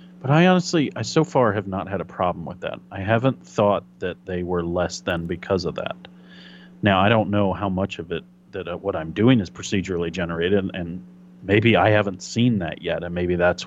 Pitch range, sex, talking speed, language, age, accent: 95-125 Hz, male, 220 wpm, English, 40-59, American